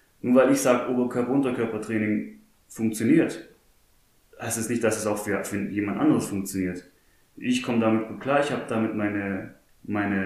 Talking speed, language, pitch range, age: 150 wpm, German, 105-125 Hz, 20-39